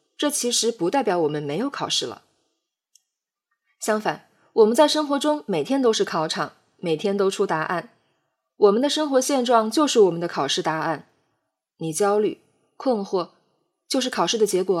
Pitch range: 180-255 Hz